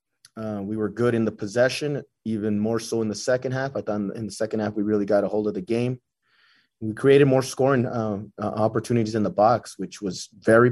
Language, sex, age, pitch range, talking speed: English, male, 20-39, 105-120 Hz, 230 wpm